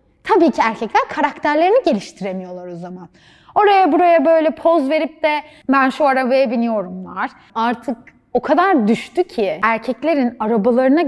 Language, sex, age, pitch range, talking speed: Turkish, female, 10-29, 220-310 Hz, 130 wpm